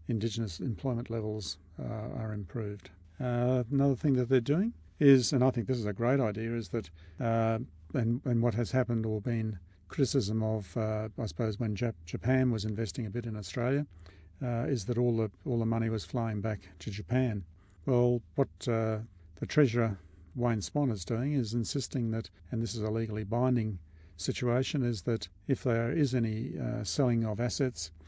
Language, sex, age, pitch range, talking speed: English, male, 50-69, 105-125 Hz, 185 wpm